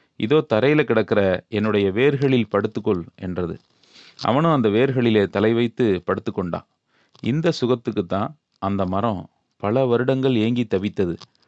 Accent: native